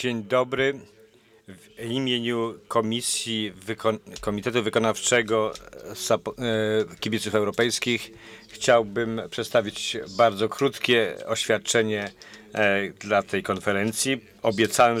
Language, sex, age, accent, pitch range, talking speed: English, male, 40-59, Polish, 110-130 Hz, 75 wpm